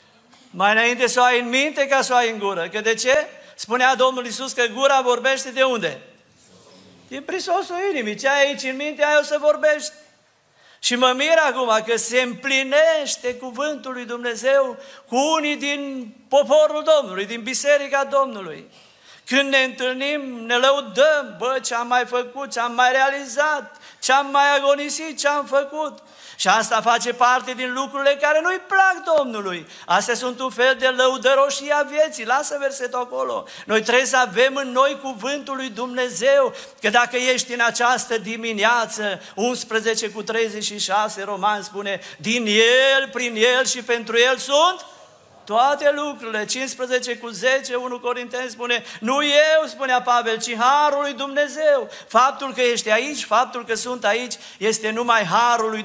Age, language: 50-69, Romanian